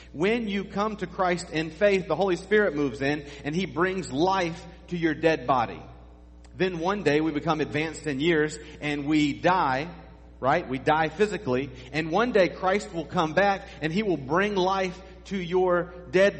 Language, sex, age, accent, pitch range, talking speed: English, male, 40-59, American, 125-185 Hz, 185 wpm